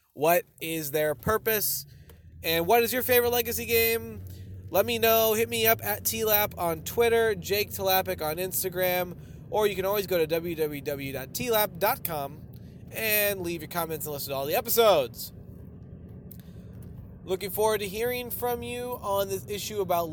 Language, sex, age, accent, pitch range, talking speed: English, male, 20-39, American, 140-225 Hz, 155 wpm